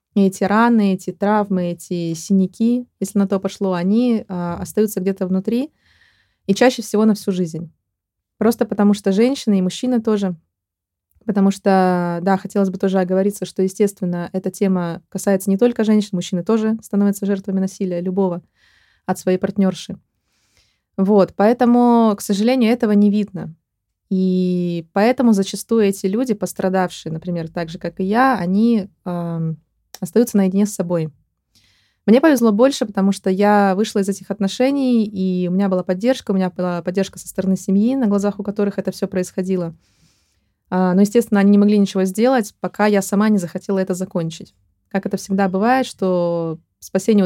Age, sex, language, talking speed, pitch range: 20-39, female, Russian, 155 wpm, 185-215 Hz